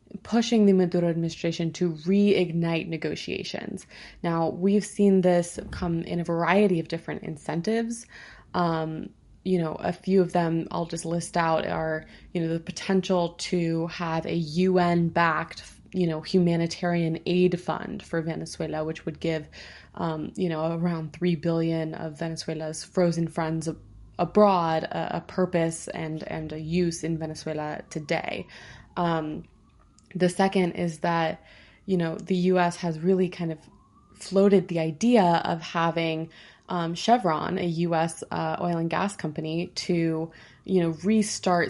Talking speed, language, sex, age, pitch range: 145 wpm, English, female, 20-39, 165-185 Hz